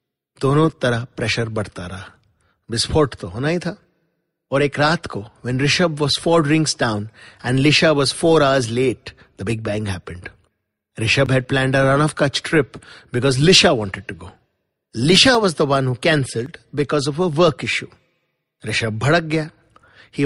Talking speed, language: 125 wpm, English